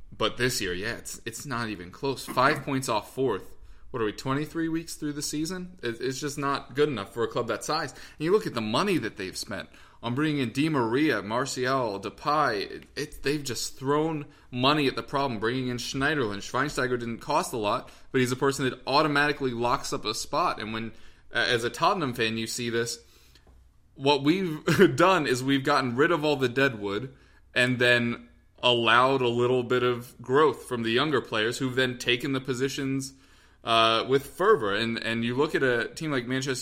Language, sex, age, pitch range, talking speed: English, male, 20-39, 115-145 Hz, 205 wpm